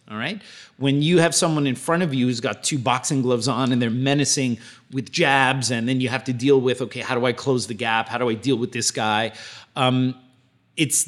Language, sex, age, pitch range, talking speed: English, male, 30-49, 110-135 Hz, 240 wpm